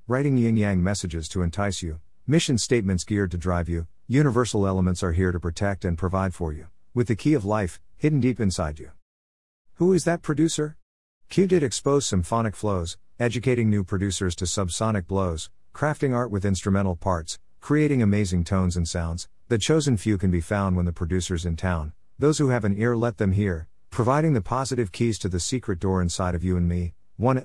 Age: 50-69